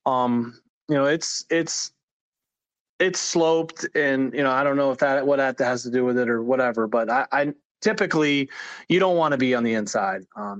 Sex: male